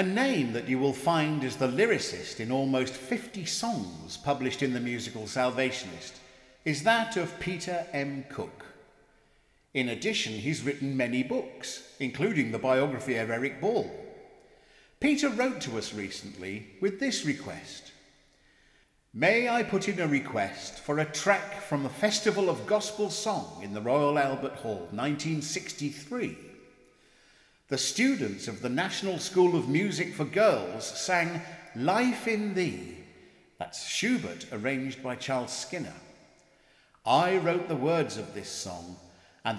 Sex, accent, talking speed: male, British, 140 wpm